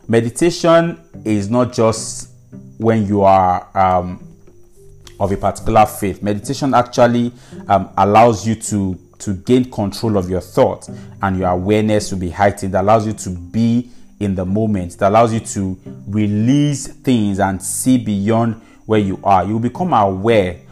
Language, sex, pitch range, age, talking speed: English, male, 95-120 Hz, 30-49, 155 wpm